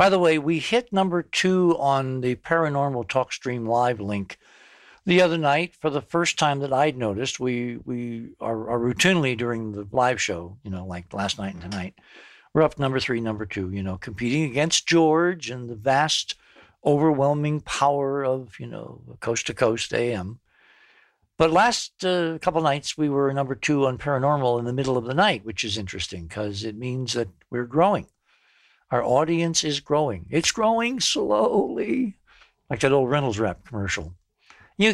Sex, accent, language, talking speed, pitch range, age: male, American, English, 175 wpm, 110-150 Hz, 60-79